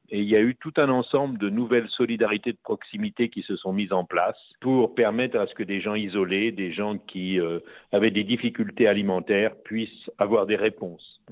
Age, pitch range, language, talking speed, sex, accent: 50-69, 105-125 Hz, French, 205 wpm, male, French